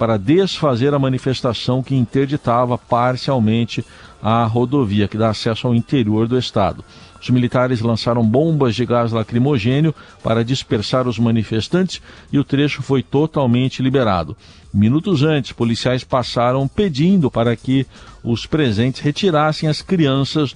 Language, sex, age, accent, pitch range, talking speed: Portuguese, male, 50-69, Brazilian, 115-140 Hz, 130 wpm